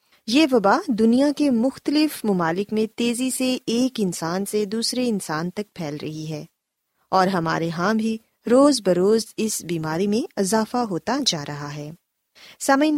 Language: Urdu